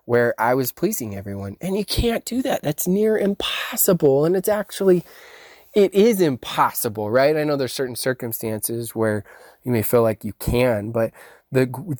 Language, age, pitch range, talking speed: English, 20-39, 115-155 Hz, 170 wpm